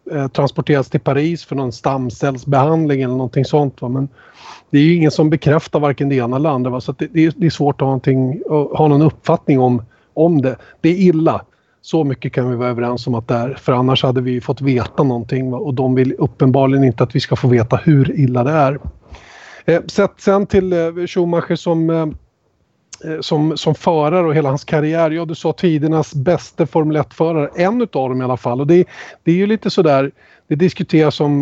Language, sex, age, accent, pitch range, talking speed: English, male, 30-49, Swedish, 130-165 Hz, 200 wpm